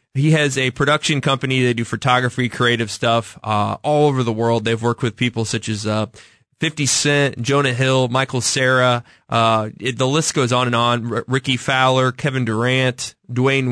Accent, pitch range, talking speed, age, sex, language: American, 115-135 Hz, 175 wpm, 20-39, male, English